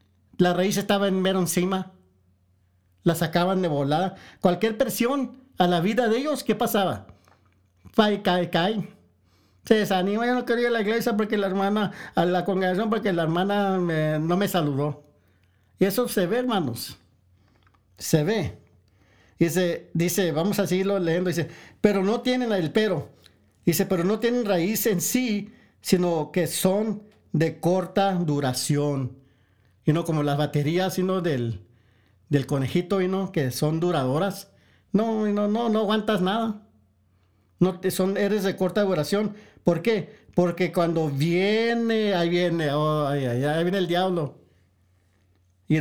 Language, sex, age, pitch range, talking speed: English, male, 50-69, 145-205 Hz, 155 wpm